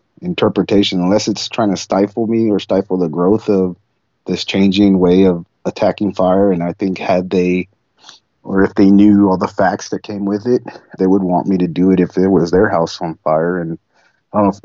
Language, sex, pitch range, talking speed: English, male, 90-100 Hz, 215 wpm